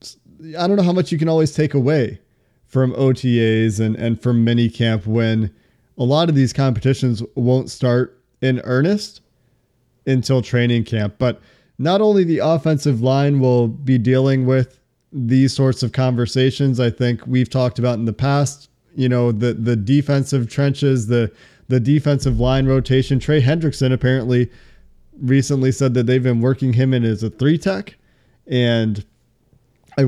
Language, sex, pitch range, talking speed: English, male, 120-135 Hz, 160 wpm